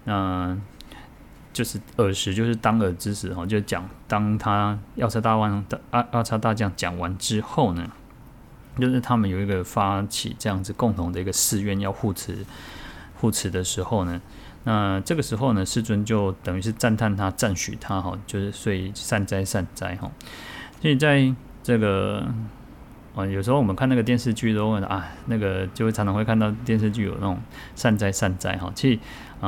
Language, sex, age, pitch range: Chinese, male, 20-39, 95-115 Hz